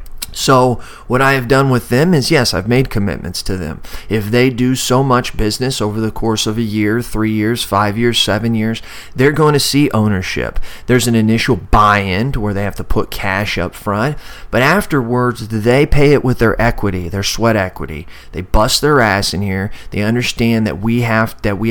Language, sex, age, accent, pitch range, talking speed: English, male, 30-49, American, 105-125 Hz, 200 wpm